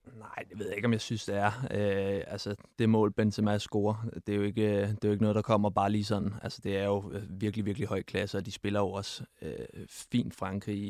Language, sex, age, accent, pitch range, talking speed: Danish, male, 20-39, native, 100-115 Hz, 255 wpm